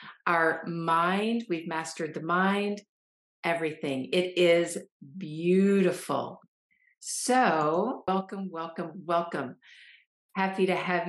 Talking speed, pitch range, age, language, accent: 90 wpm, 170-215 Hz, 50-69, English, American